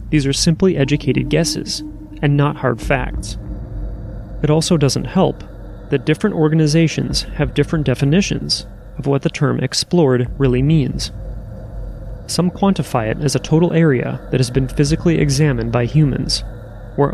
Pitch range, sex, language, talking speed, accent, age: 115-155 Hz, male, English, 145 wpm, American, 30-49